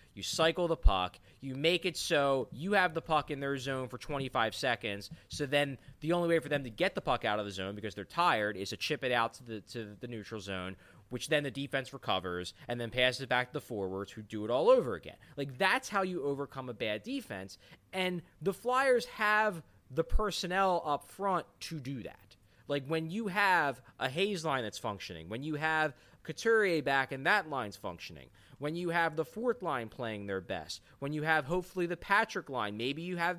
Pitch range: 120-180 Hz